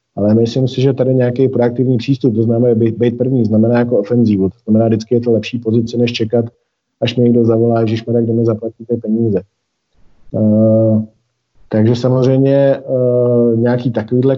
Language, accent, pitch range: Czech, native, 115-130 Hz